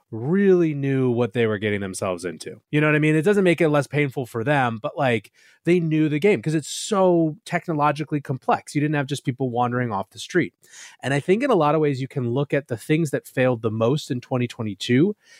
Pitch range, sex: 120-150 Hz, male